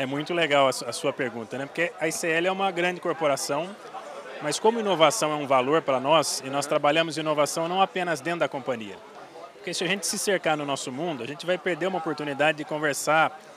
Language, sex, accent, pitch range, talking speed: Portuguese, male, Brazilian, 140-175 Hz, 210 wpm